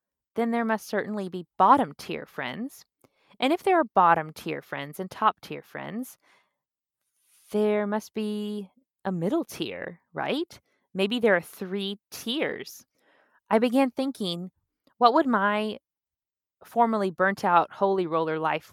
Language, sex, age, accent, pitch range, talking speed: English, female, 20-39, American, 170-230 Hz, 120 wpm